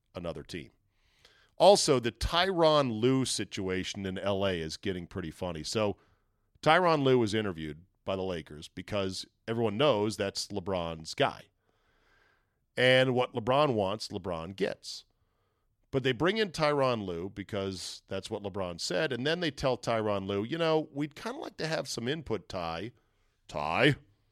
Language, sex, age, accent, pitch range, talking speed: English, male, 40-59, American, 100-135 Hz, 155 wpm